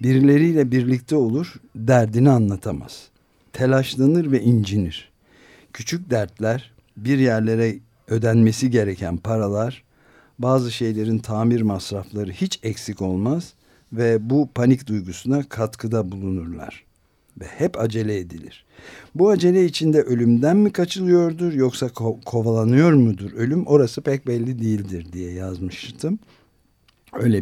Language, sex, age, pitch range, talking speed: Turkish, male, 60-79, 105-130 Hz, 105 wpm